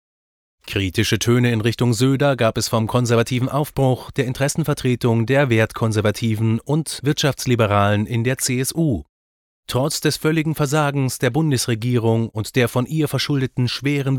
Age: 30-49